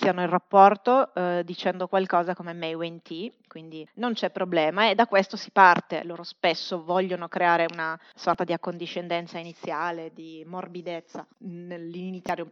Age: 30-49